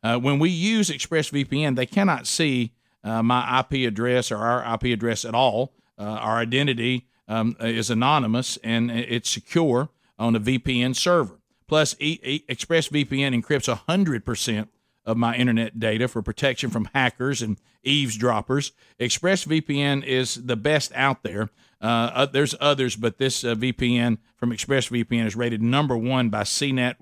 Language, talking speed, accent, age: English, 150 wpm, American, 50-69